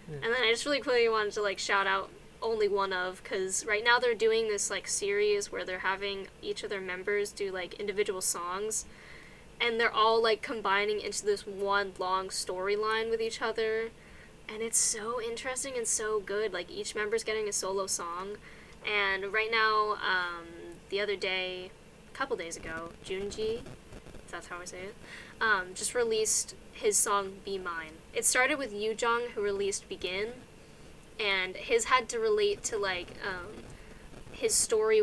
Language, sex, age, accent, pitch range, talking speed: English, female, 10-29, American, 195-240 Hz, 175 wpm